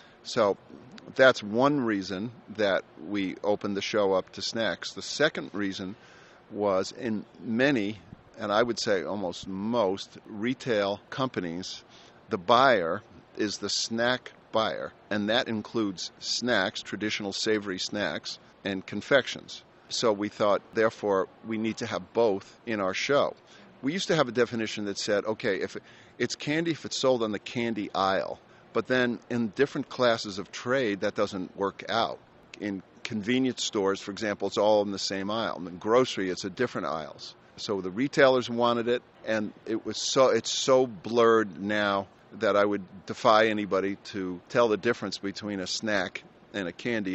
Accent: American